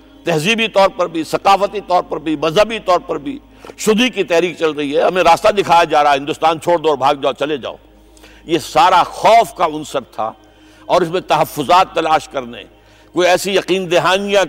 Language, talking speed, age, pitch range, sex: Urdu, 200 wpm, 60-79, 150-190 Hz, male